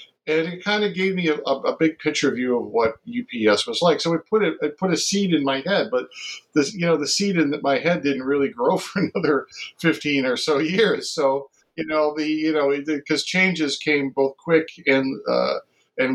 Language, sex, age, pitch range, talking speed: English, male, 50-69, 115-165 Hz, 215 wpm